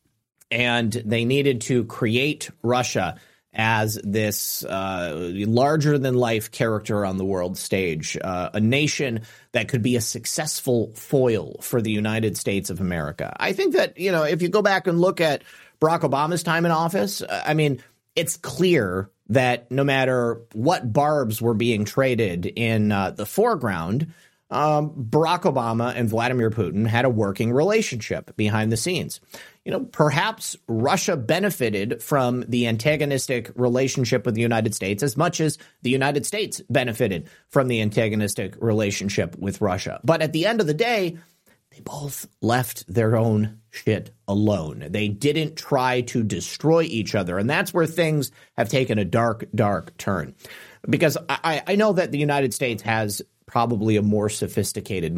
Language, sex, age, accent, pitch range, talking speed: English, male, 30-49, American, 110-150 Hz, 160 wpm